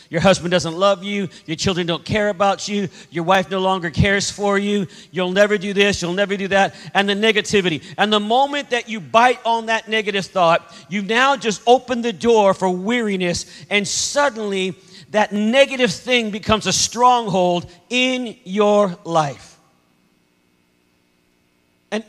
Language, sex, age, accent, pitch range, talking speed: English, male, 40-59, American, 170-220 Hz, 160 wpm